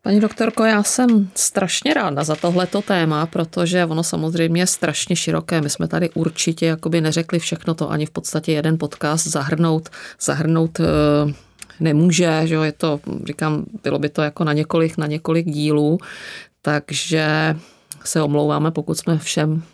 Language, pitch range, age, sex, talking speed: Czech, 150-165 Hz, 30-49, female, 160 wpm